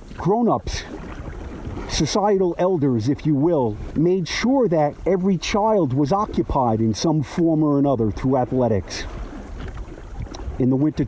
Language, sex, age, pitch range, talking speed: English, male, 50-69, 115-165 Hz, 125 wpm